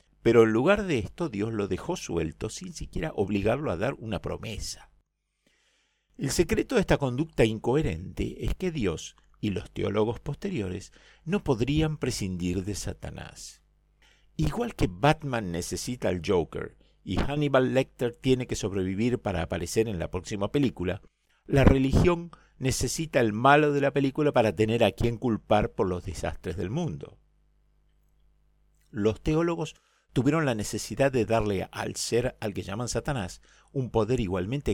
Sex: male